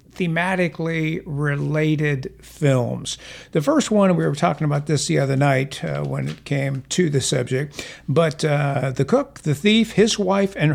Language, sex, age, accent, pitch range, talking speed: English, male, 60-79, American, 135-175 Hz, 165 wpm